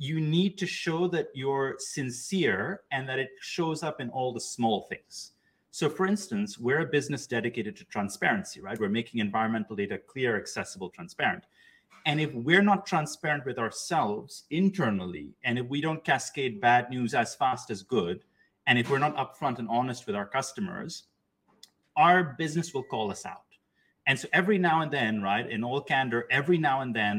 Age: 30-49